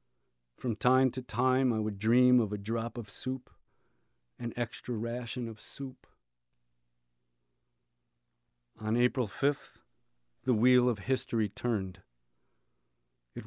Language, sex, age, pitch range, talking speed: English, male, 40-59, 105-130 Hz, 115 wpm